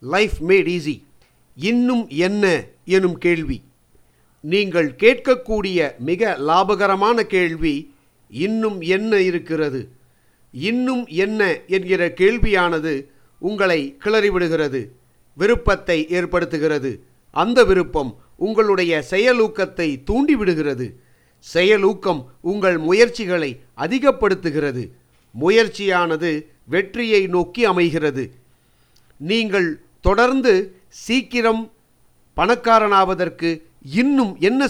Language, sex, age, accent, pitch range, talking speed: Tamil, male, 50-69, native, 155-215 Hz, 75 wpm